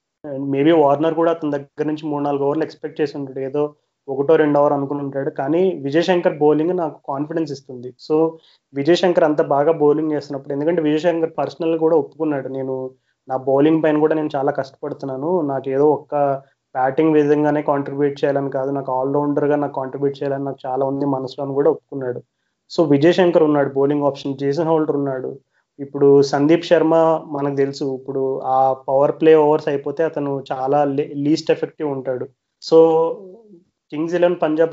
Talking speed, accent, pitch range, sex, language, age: 155 wpm, native, 140-155 Hz, male, Telugu, 20-39